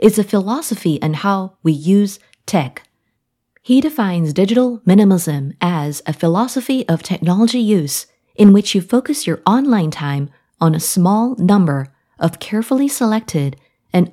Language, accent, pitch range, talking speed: English, American, 150-220 Hz, 140 wpm